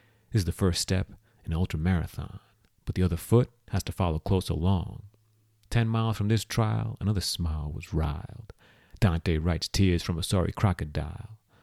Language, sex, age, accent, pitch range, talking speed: English, male, 30-49, American, 90-110 Hz, 175 wpm